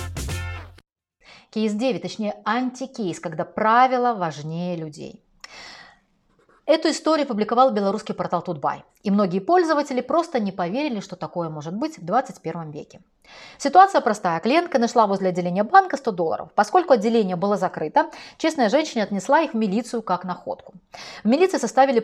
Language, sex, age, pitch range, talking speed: Russian, female, 30-49, 180-265 Hz, 140 wpm